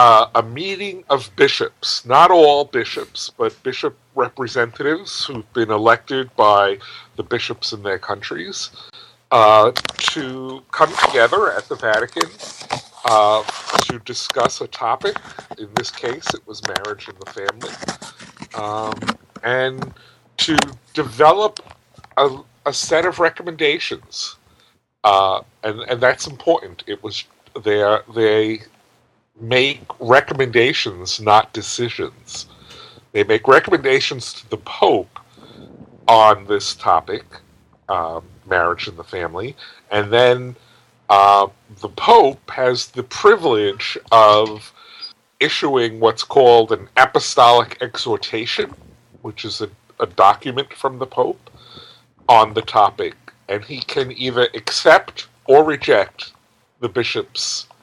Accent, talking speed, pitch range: American, 115 wpm, 110-175 Hz